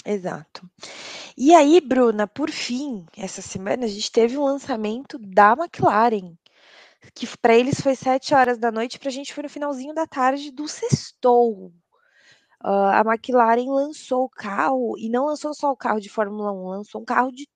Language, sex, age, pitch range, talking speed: Portuguese, female, 20-39, 220-275 Hz, 180 wpm